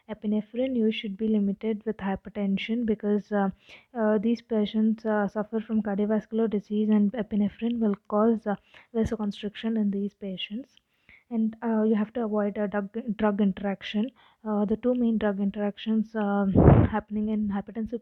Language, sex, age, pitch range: English, female, 20-39, 205-225 Hz